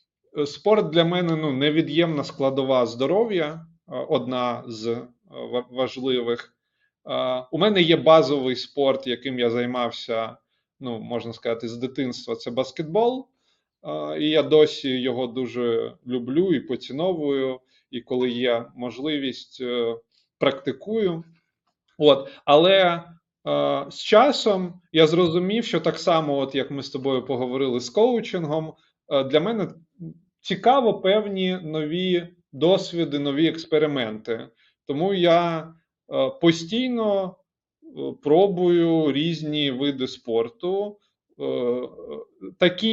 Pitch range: 125-175 Hz